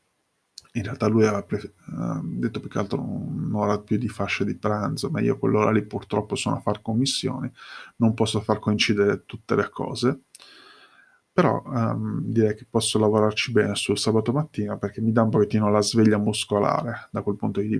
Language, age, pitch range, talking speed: Italian, 20-39, 105-120 Hz, 170 wpm